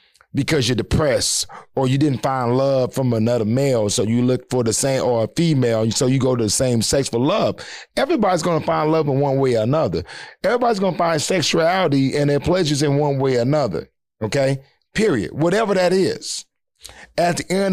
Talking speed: 205 wpm